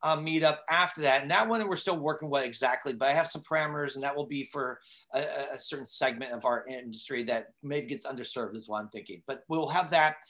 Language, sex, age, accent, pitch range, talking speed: English, male, 40-59, American, 150-185 Hz, 250 wpm